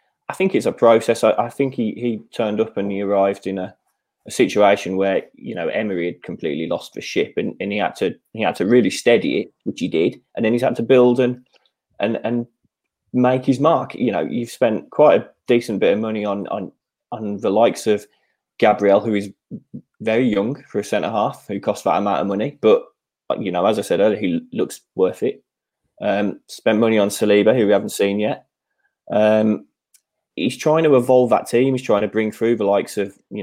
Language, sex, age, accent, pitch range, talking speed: English, male, 20-39, British, 100-125 Hz, 220 wpm